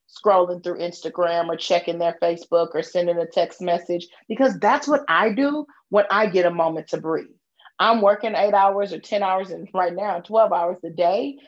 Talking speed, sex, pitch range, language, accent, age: 200 wpm, female, 170-215 Hz, English, American, 30-49